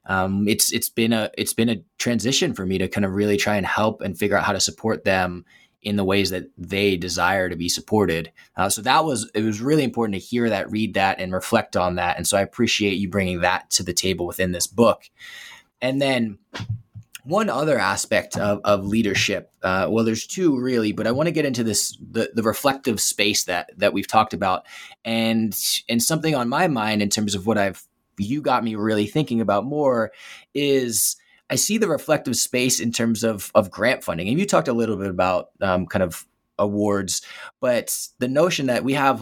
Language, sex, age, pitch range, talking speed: English, male, 20-39, 100-115 Hz, 215 wpm